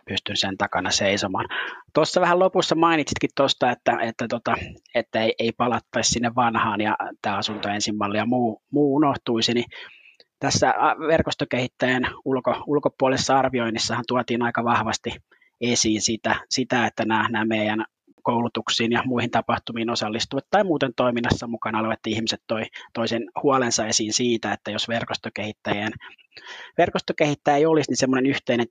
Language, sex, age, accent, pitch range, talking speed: Finnish, male, 20-39, native, 110-130 Hz, 140 wpm